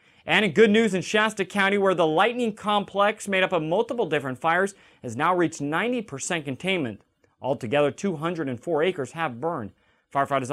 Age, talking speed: 30-49, 160 wpm